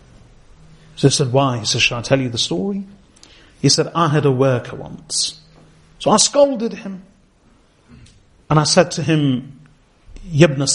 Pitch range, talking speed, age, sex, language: 130-160 Hz, 160 wpm, 30-49, male, English